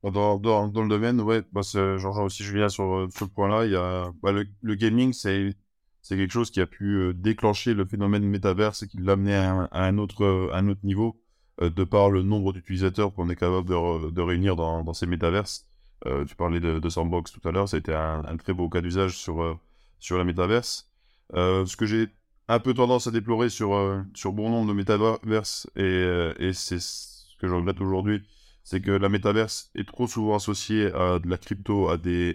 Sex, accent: male, French